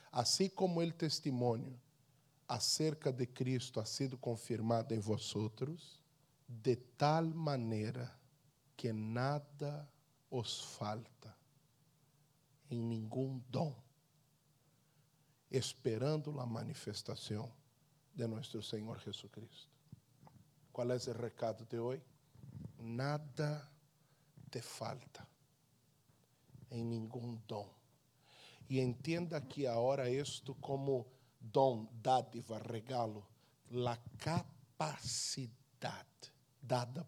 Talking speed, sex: 85 wpm, male